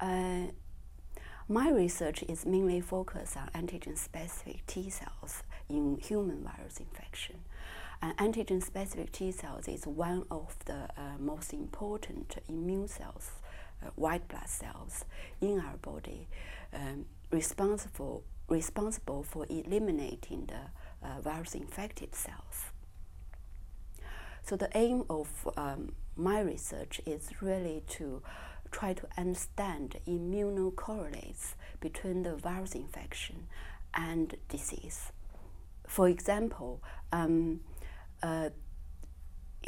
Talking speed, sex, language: 100 wpm, female, English